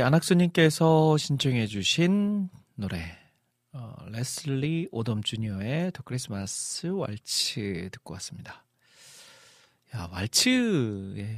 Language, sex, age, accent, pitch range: Korean, male, 40-59, native, 110-150 Hz